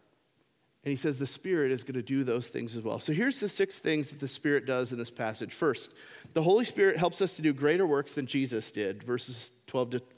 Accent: American